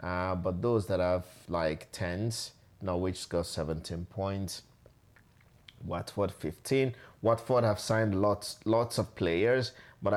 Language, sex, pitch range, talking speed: English, male, 85-110 Hz, 125 wpm